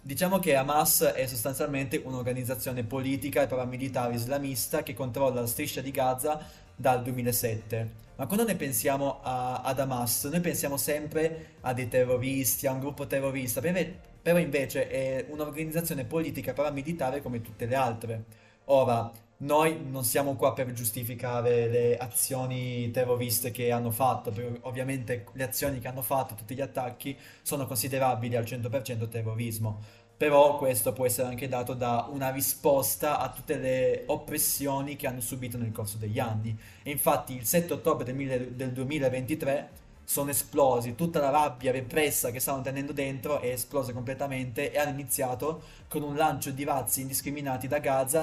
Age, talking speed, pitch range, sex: 20-39, 155 wpm, 125-145 Hz, male